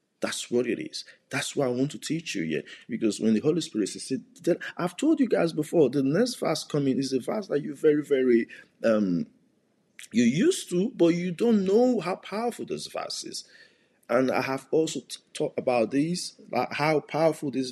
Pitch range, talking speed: 145-215 Hz, 200 wpm